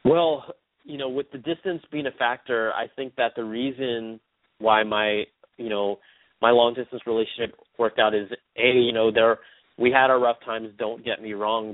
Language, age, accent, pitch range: English, 30-49, American, 115-140 Hz